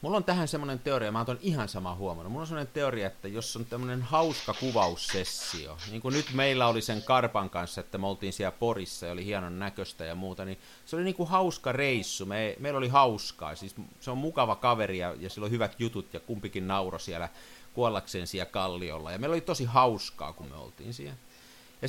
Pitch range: 100-150 Hz